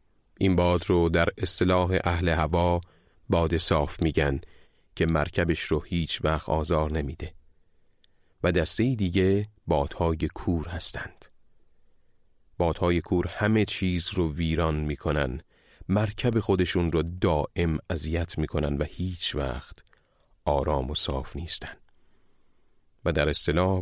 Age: 40-59